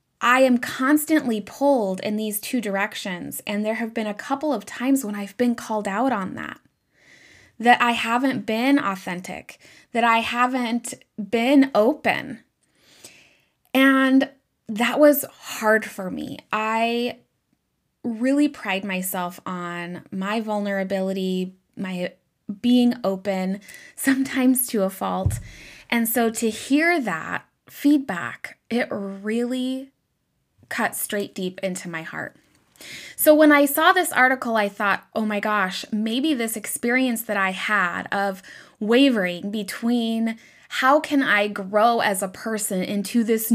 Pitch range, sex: 200-250 Hz, female